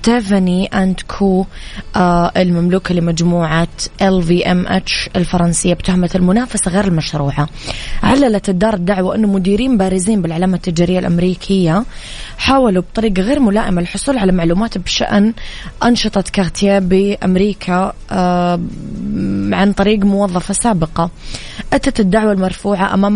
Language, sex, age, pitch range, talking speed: Arabic, female, 20-39, 180-210 Hz, 105 wpm